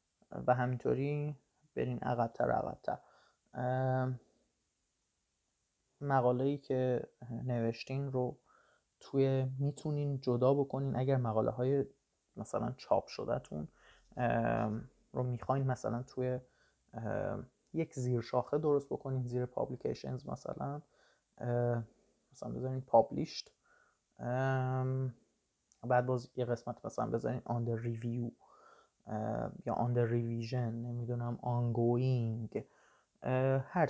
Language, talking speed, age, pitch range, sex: Persian, 85 wpm, 20-39, 120-135 Hz, male